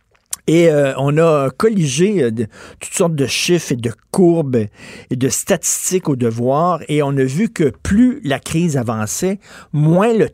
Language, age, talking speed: French, 50-69, 175 wpm